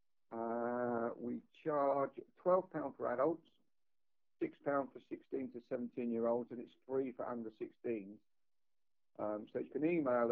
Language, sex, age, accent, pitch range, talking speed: English, male, 50-69, British, 115-135 Hz, 140 wpm